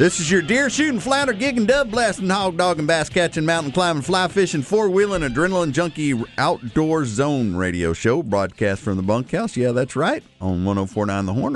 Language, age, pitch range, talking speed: English, 50-69, 110-165 Hz, 160 wpm